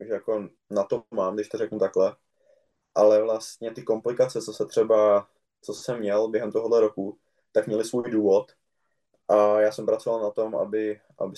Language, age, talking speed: Czech, 20-39, 180 wpm